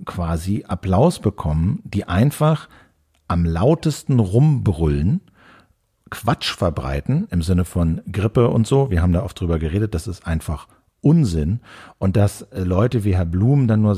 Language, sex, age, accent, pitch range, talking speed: German, male, 50-69, German, 90-115 Hz, 145 wpm